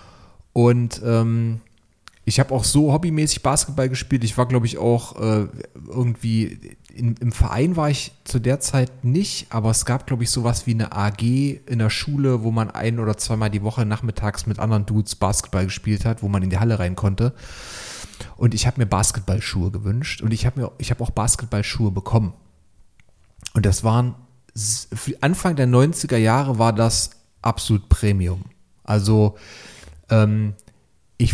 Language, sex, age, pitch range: German, male, 40-59, 105-125 Hz